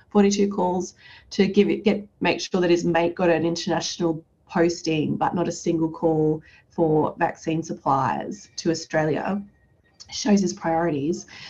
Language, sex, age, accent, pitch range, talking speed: English, female, 20-39, Australian, 165-200 Hz, 145 wpm